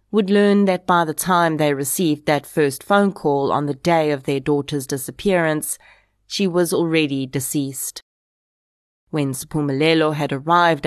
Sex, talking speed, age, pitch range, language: female, 150 wpm, 30-49, 140-165 Hz, English